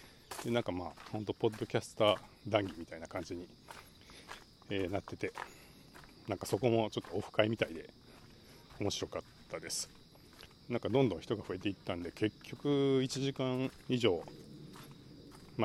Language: Japanese